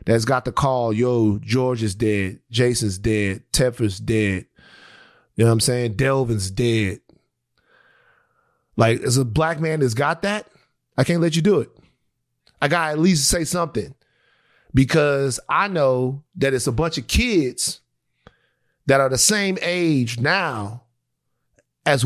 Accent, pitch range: American, 120-175 Hz